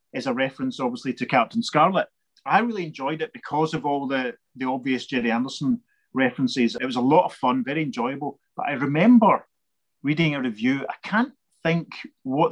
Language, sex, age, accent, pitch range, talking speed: English, male, 30-49, British, 125-195 Hz, 180 wpm